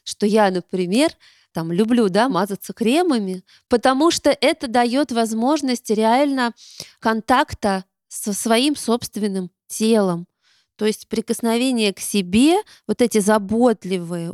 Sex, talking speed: female, 115 wpm